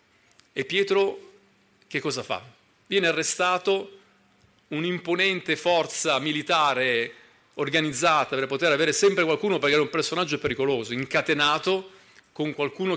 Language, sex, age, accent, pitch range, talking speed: Italian, male, 40-59, native, 130-175 Hz, 110 wpm